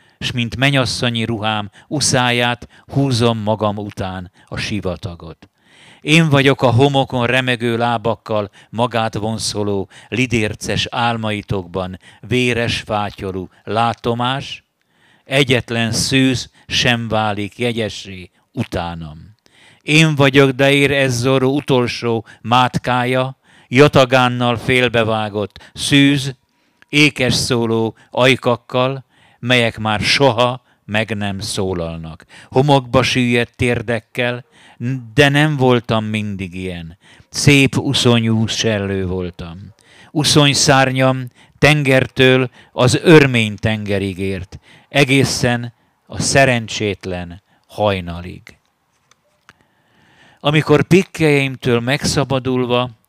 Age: 50-69